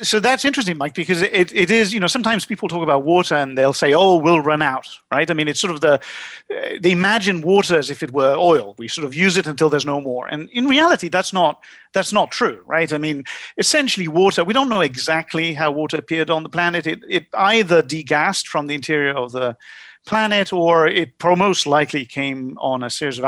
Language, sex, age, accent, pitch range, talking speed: English, male, 50-69, British, 145-200 Hz, 230 wpm